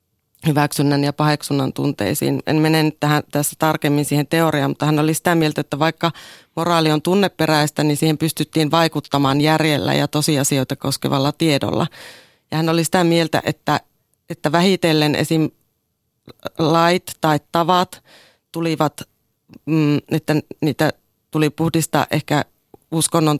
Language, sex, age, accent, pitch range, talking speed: Finnish, female, 30-49, native, 145-160 Hz, 125 wpm